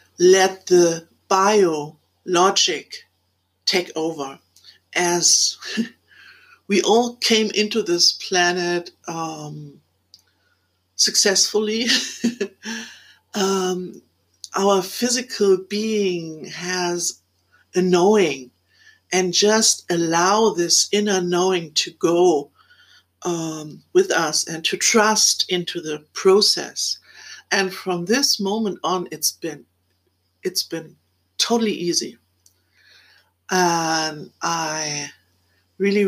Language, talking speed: English, 90 wpm